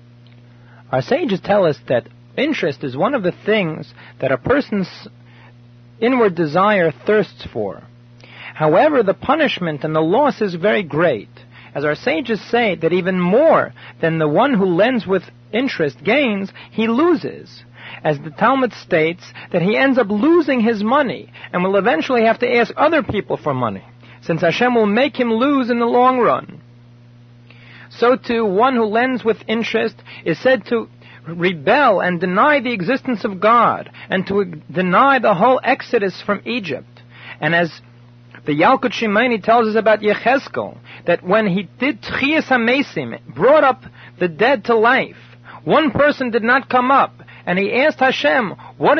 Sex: male